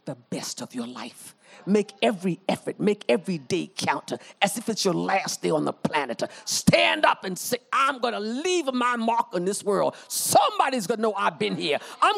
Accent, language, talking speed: American, English, 195 wpm